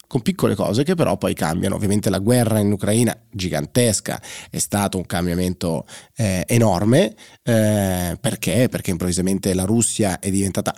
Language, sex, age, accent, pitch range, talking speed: Italian, male, 30-49, native, 100-130 Hz, 150 wpm